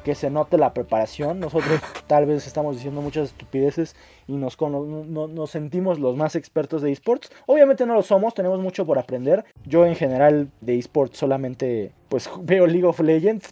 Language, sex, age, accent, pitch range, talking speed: Spanish, male, 20-39, Mexican, 135-165 Hz, 185 wpm